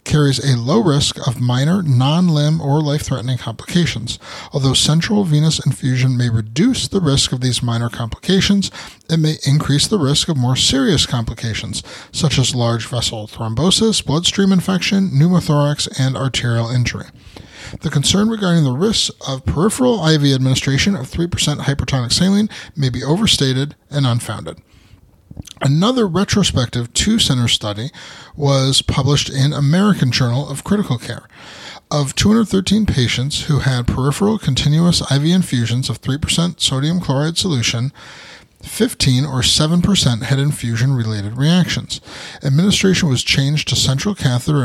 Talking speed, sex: 130 wpm, male